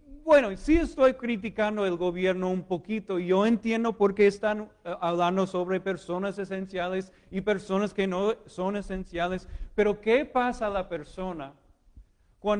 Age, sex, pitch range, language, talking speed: 40-59, male, 140-205 Hz, Spanish, 140 wpm